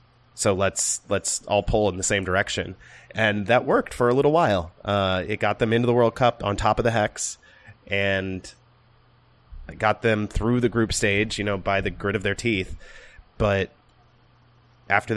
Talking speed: 180 wpm